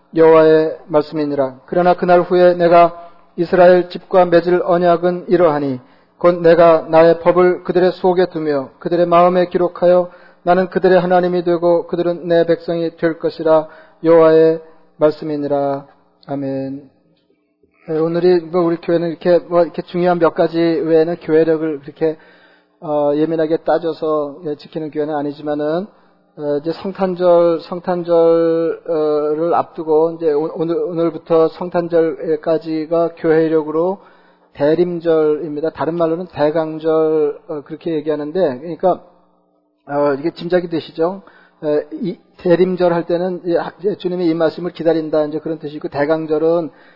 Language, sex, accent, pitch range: Korean, male, native, 155-175 Hz